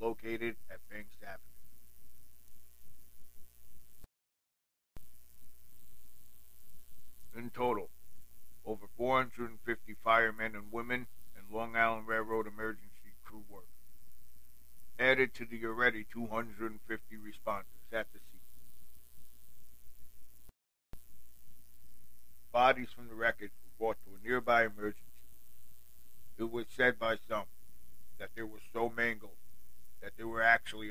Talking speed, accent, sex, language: 90 wpm, American, male, English